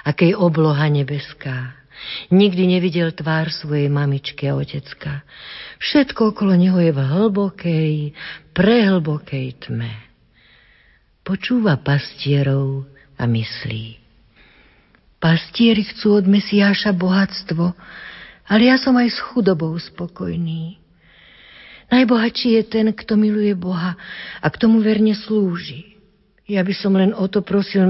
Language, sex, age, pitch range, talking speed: Slovak, female, 50-69, 145-205 Hz, 110 wpm